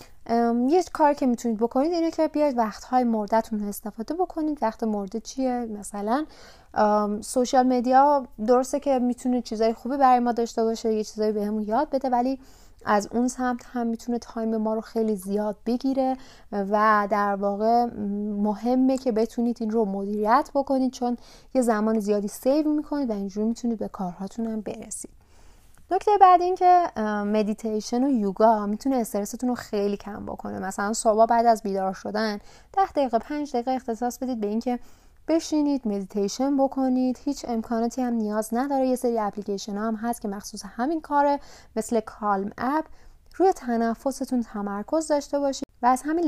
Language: Persian